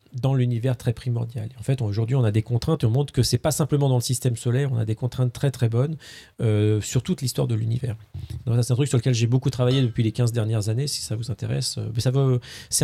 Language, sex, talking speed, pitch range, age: French, male, 270 wpm, 115-140 Hz, 40-59